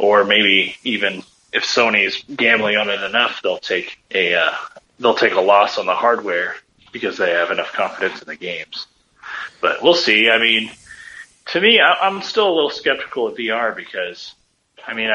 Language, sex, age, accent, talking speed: English, male, 30-49, American, 180 wpm